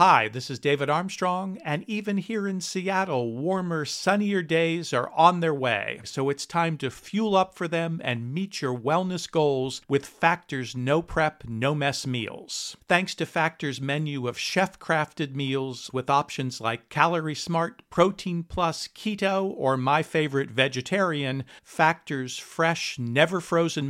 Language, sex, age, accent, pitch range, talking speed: English, male, 50-69, American, 130-175 Hz, 150 wpm